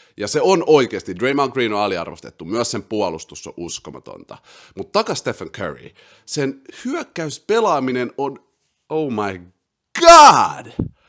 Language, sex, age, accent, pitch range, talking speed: Finnish, male, 30-49, native, 95-140 Hz, 130 wpm